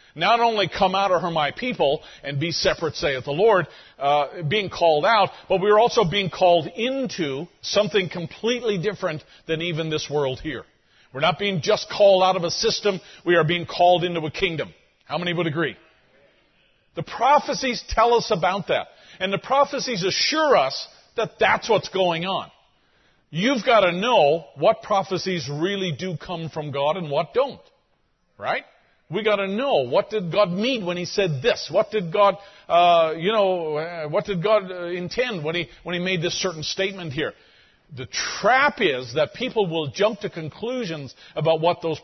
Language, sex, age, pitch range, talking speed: English, male, 50-69, 155-205 Hz, 185 wpm